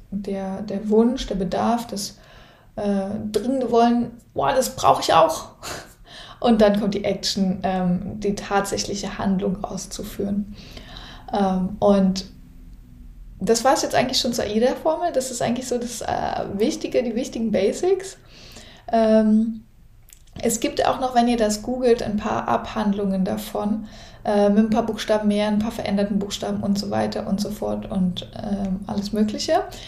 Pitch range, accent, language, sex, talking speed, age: 195-235 Hz, German, German, female, 155 wpm, 20-39